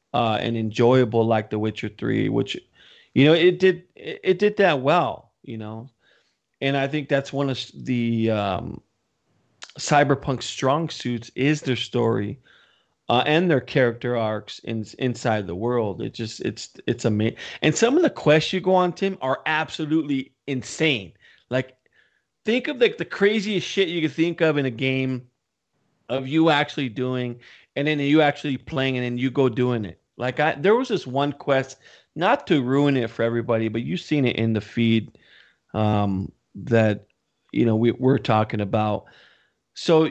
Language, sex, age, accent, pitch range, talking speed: English, male, 40-59, American, 115-150 Hz, 175 wpm